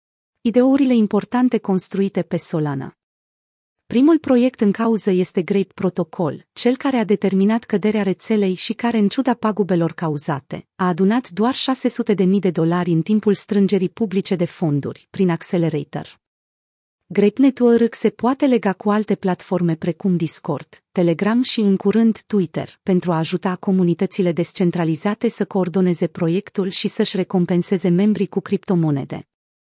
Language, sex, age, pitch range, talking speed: Romanian, female, 30-49, 175-215 Hz, 140 wpm